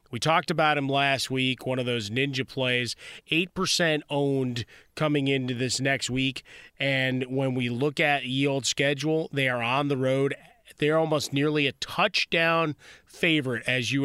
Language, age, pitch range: English, 30-49, 125-145 Hz